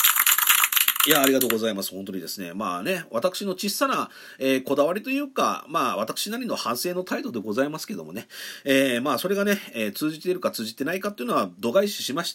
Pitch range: 125-200 Hz